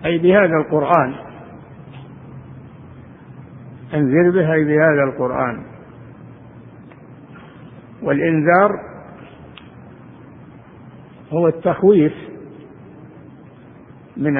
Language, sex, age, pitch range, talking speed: Arabic, male, 60-79, 145-180 Hz, 40 wpm